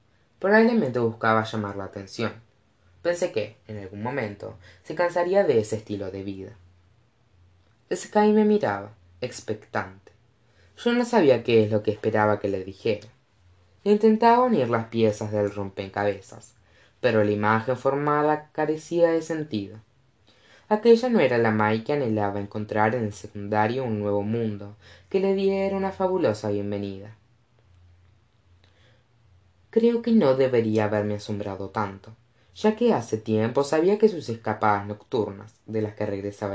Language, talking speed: Spanish, 145 wpm